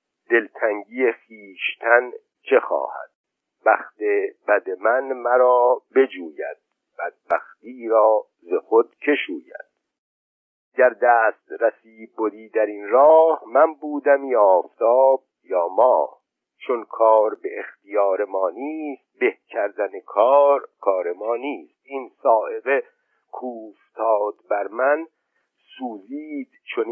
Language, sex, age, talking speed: Persian, male, 50-69, 105 wpm